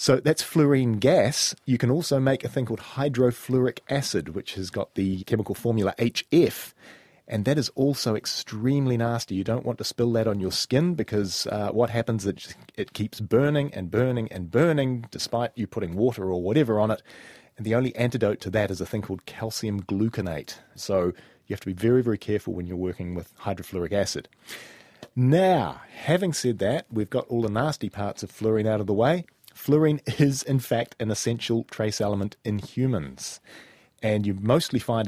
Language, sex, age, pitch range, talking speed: English, male, 30-49, 105-135 Hz, 190 wpm